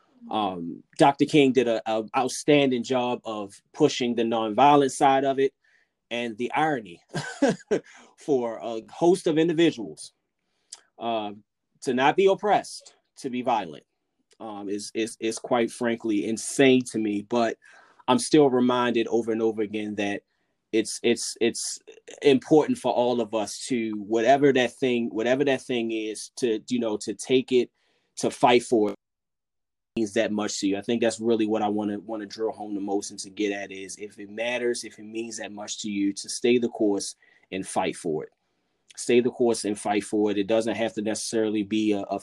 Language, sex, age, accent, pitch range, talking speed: English, male, 20-39, American, 105-125 Hz, 190 wpm